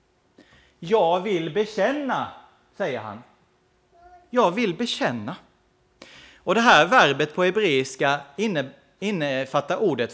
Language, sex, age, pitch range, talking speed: Swedish, male, 30-49, 130-200 Hz, 95 wpm